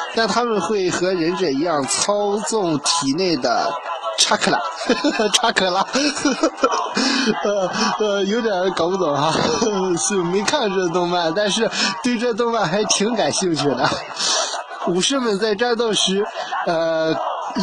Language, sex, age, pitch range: Chinese, male, 20-39, 170-230 Hz